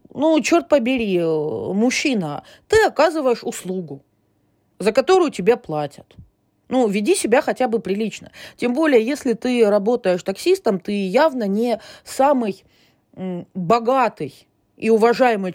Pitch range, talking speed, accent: 185-255 Hz, 115 wpm, native